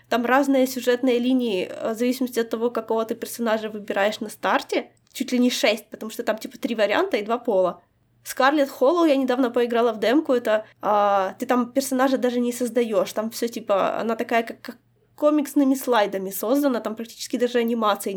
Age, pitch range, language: 20-39, 230-275 Hz, Ukrainian